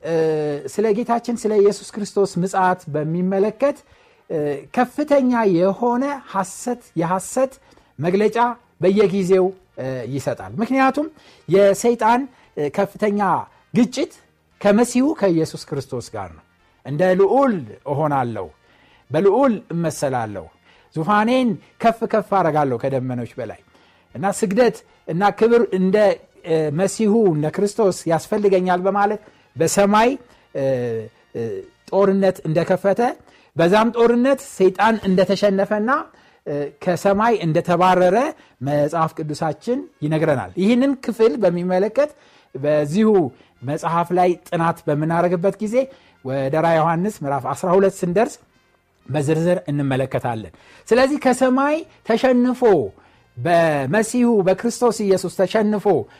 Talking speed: 85 wpm